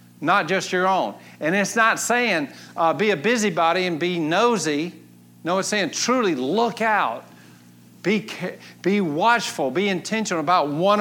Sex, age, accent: male, 50-69, American